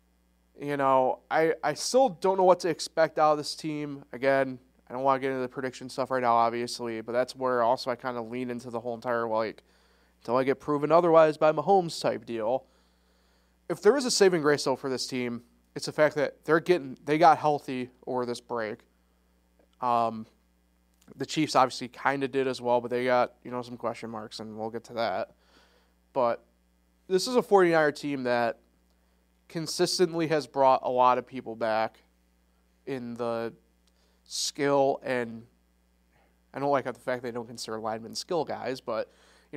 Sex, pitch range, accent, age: male, 110-145 Hz, American, 30-49